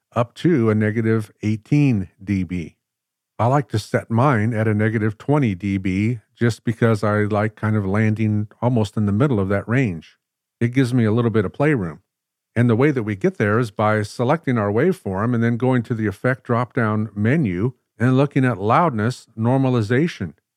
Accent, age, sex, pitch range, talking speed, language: American, 50-69, male, 105-125 Hz, 185 wpm, English